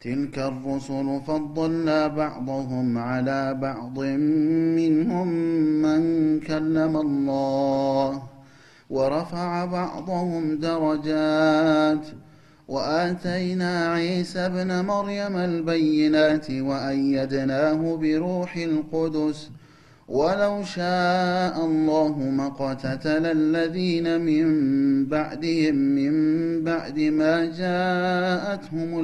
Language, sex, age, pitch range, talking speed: Amharic, male, 30-49, 135-165 Hz, 65 wpm